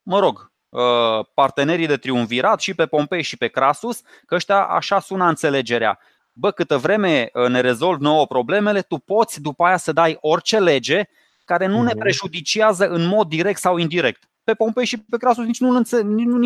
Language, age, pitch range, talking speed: Romanian, 20-39, 140-210 Hz, 170 wpm